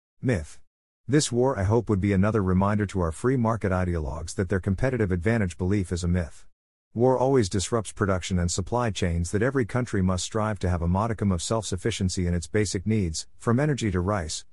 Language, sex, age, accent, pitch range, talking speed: English, male, 50-69, American, 90-115 Hz, 200 wpm